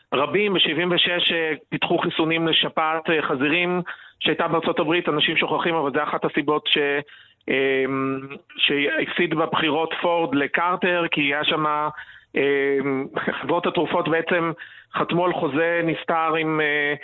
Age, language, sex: 40-59, Hebrew, male